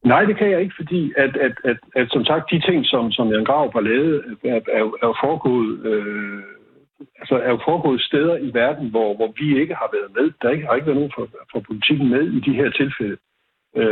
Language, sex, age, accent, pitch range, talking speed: Danish, male, 60-79, native, 115-170 Hz, 225 wpm